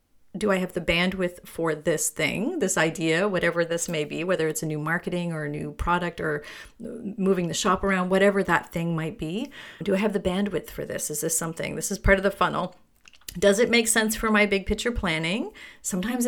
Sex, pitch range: female, 165-210 Hz